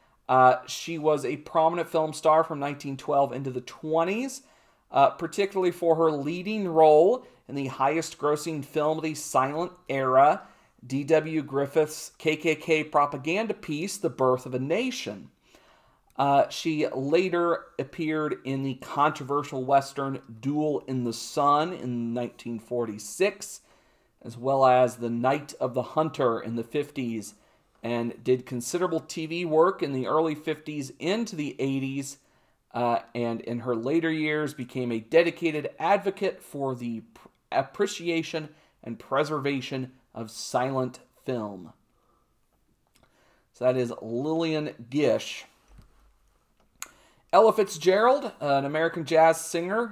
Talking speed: 125 wpm